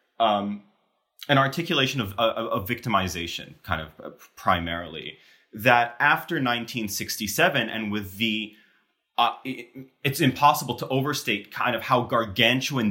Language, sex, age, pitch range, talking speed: English, male, 30-49, 100-130 Hz, 125 wpm